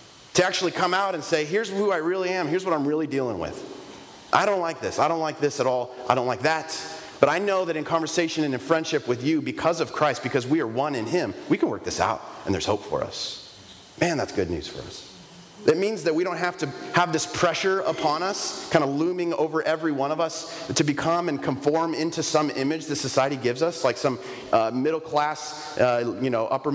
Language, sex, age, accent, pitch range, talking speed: English, male, 30-49, American, 120-160 Hz, 240 wpm